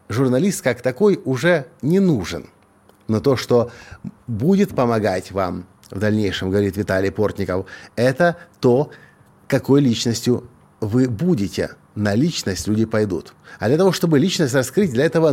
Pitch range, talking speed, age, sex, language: 110-145 Hz, 135 wpm, 50-69, male, Russian